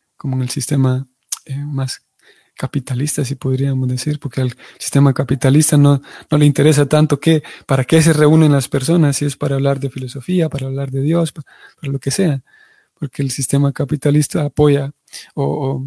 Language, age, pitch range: Spanish, 30-49, 130-150 Hz